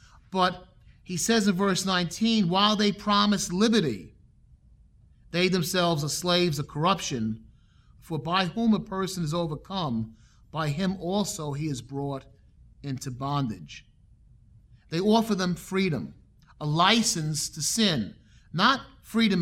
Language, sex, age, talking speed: English, male, 40-59, 125 wpm